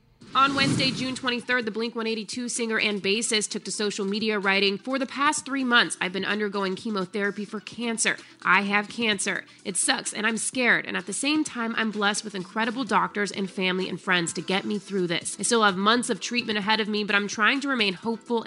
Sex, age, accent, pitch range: female, 30-49, American, 135-210 Hz